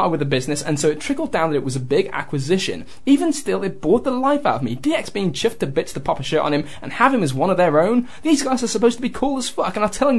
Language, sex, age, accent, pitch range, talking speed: English, male, 10-29, British, 150-240 Hz, 320 wpm